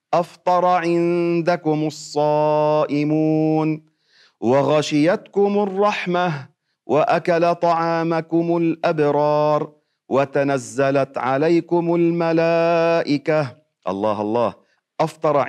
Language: Arabic